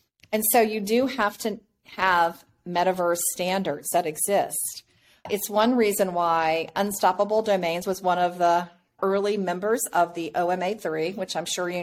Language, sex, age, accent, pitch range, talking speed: English, female, 40-59, American, 170-215 Hz, 150 wpm